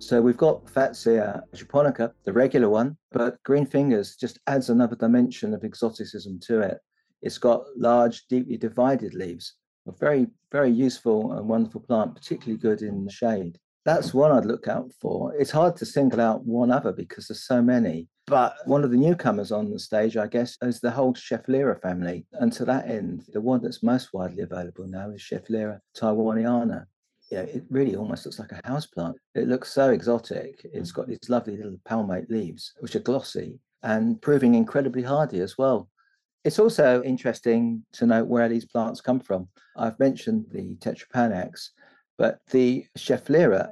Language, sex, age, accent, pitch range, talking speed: English, male, 50-69, British, 110-130 Hz, 175 wpm